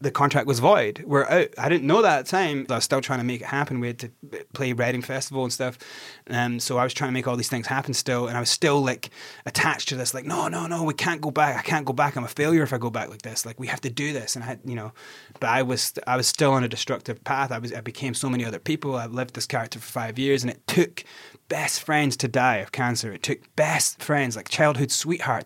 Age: 20-39